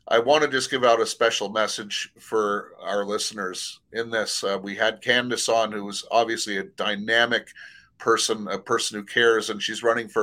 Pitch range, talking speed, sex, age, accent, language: 100-120 Hz, 195 wpm, male, 30-49, American, English